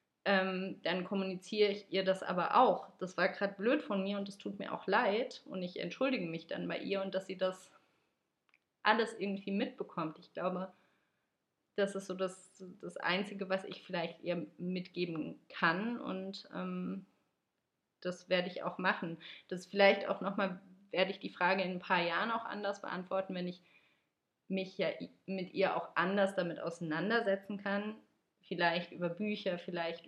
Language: English